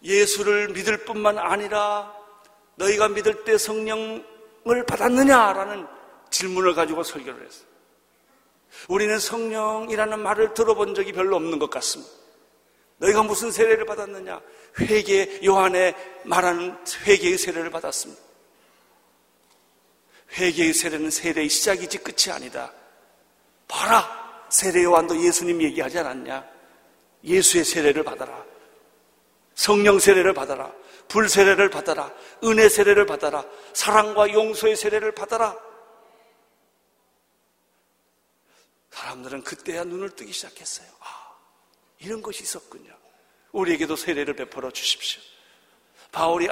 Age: 40-59